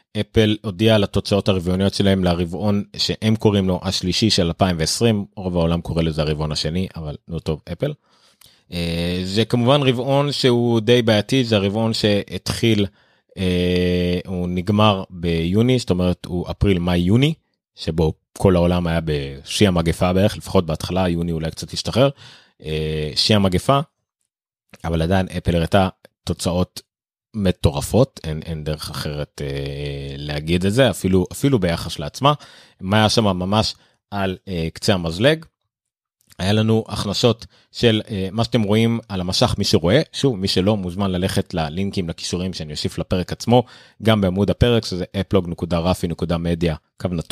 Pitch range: 85-110 Hz